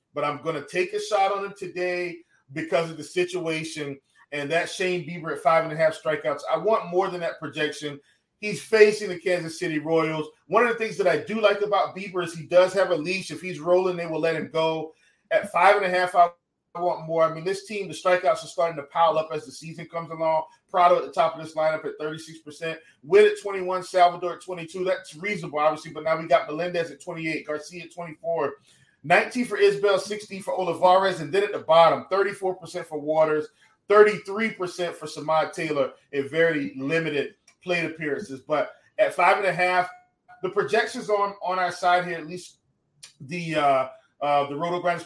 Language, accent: English, American